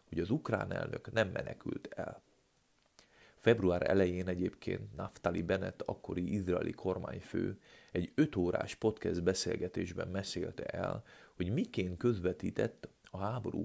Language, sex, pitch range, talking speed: Hungarian, male, 90-115 Hz, 120 wpm